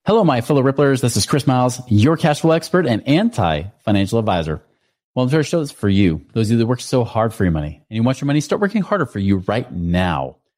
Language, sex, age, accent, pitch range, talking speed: English, male, 30-49, American, 100-135 Hz, 255 wpm